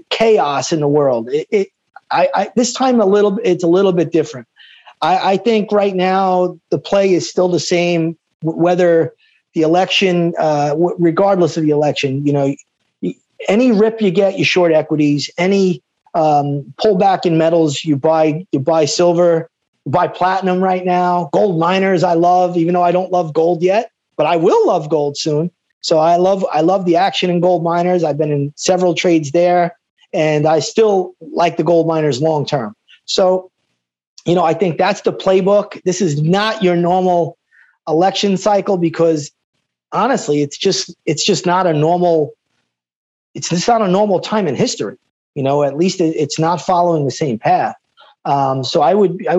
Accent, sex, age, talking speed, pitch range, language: American, male, 30-49, 175 wpm, 155-190 Hz, English